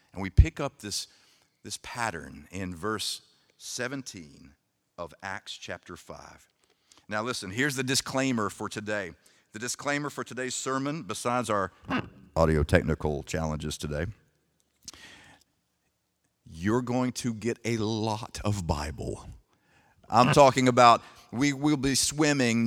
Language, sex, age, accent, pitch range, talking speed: English, male, 50-69, American, 95-130 Hz, 125 wpm